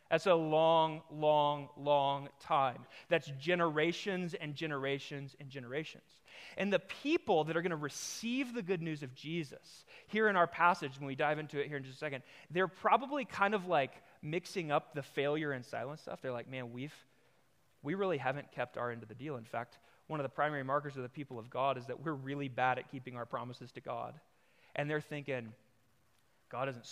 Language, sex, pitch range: English, male, 125-155 Hz